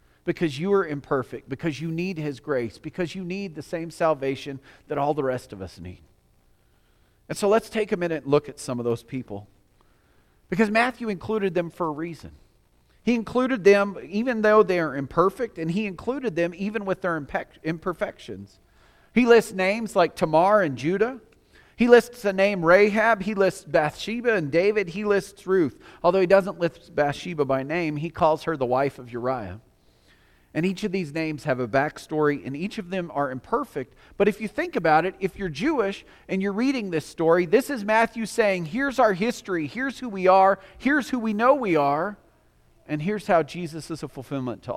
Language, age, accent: English, 40-59, American